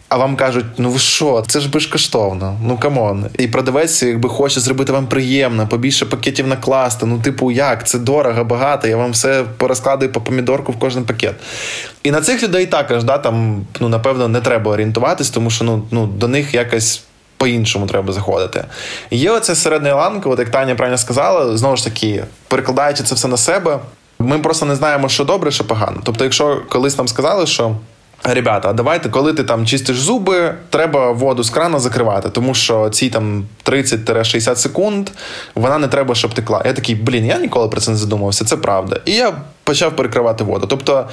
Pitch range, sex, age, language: 115-145 Hz, male, 20-39, Ukrainian